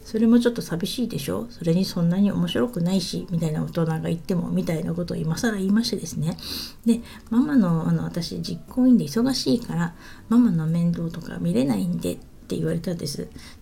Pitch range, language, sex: 175-245 Hz, Japanese, female